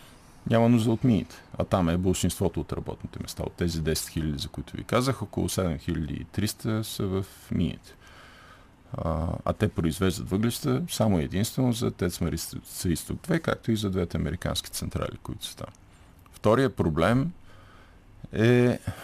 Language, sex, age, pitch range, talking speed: Bulgarian, male, 50-69, 85-115 Hz, 150 wpm